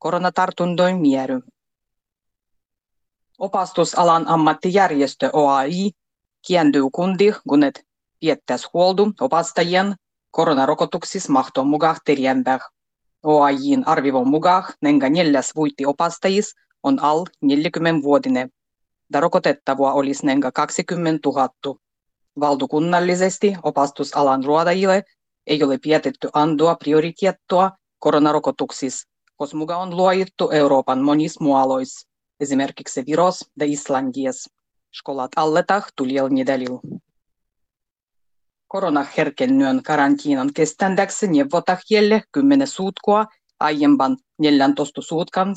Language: Finnish